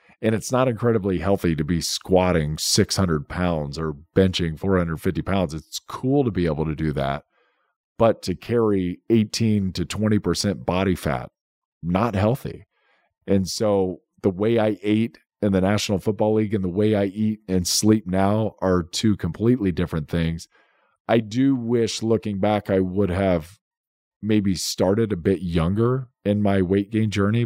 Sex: male